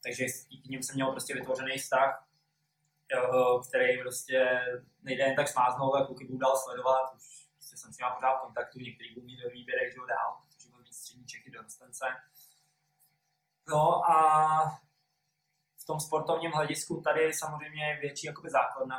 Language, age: Czech, 20-39